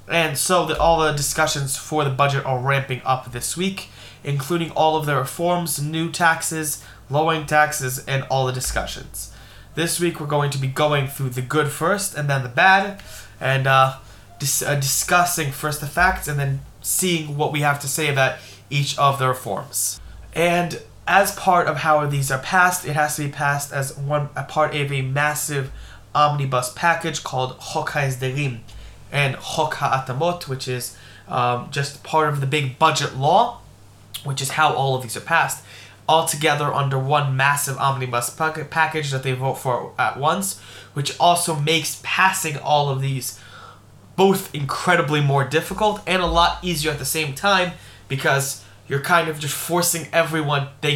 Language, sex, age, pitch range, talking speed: English, male, 20-39, 130-160 Hz, 175 wpm